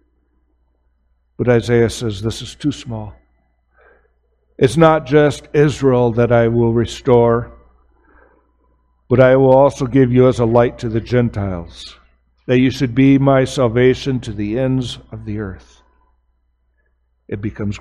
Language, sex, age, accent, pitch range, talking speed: English, male, 60-79, American, 105-145 Hz, 140 wpm